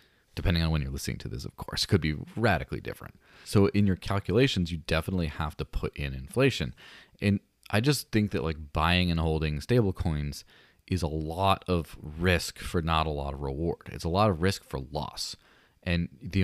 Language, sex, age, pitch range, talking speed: English, male, 30-49, 80-95 Hz, 200 wpm